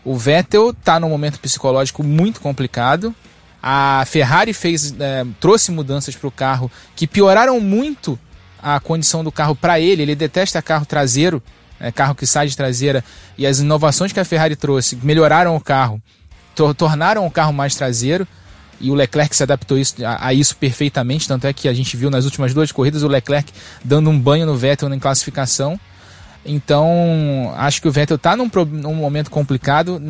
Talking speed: 170 wpm